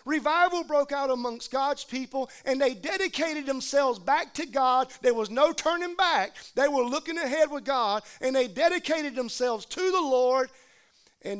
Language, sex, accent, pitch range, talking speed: English, male, American, 225-285 Hz, 170 wpm